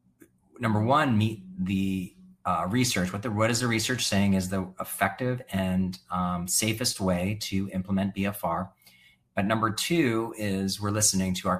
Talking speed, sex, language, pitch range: 155 wpm, male, English, 90-105 Hz